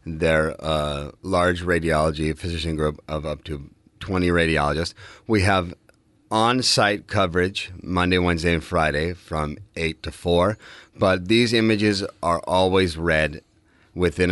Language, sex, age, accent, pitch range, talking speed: English, male, 30-49, American, 80-100 Hz, 125 wpm